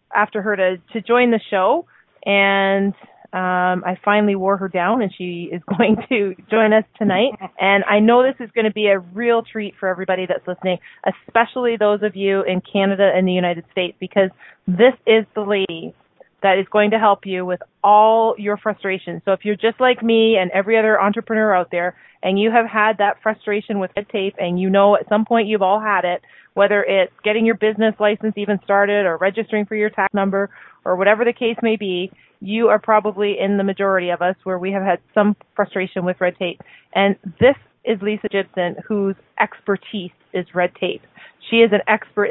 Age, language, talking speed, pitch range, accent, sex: 30-49, English, 205 wpm, 190-220 Hz, American, female